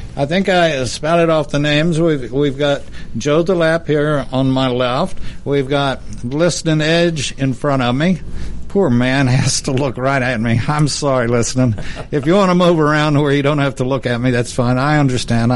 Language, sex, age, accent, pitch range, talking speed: English, male, 60-79, American, 125-155 Hz, 205 wpm